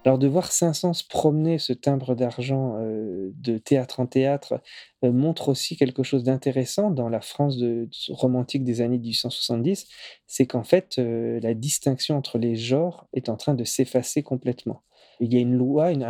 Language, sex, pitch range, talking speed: French, male, 120-140 Hz, 170 wpm